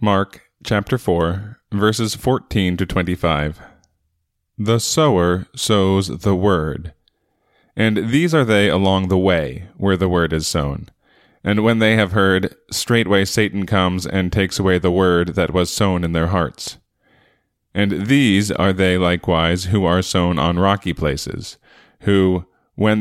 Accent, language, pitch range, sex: American, English, 90-105 Hz, male